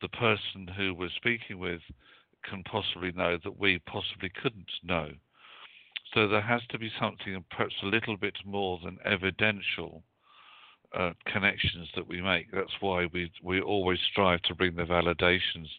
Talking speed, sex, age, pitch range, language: 160 wpm, male, 50-69, 90-105 Hz, English